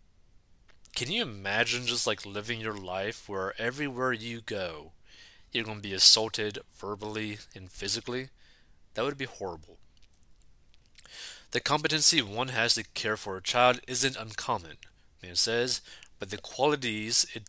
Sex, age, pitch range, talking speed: male, 30-49, 105-130 Hz, 140 wpm